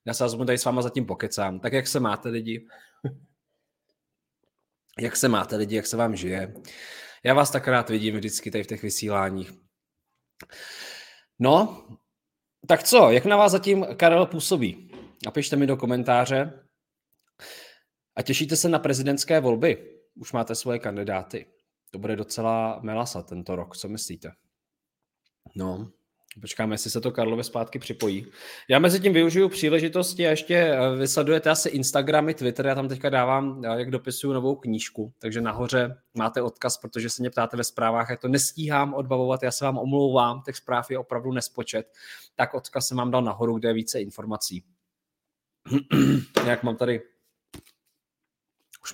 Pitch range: 110-140 Hz